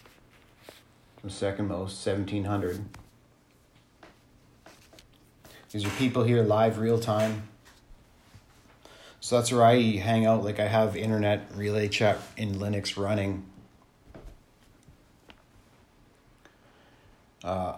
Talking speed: 90 wpm